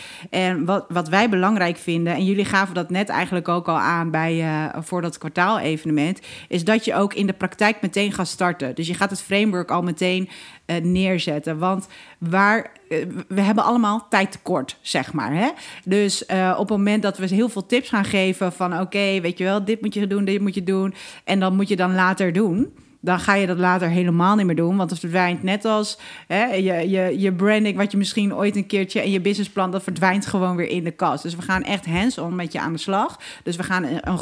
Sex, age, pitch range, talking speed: female, 40-59, 175-205 Hz, 225 wpm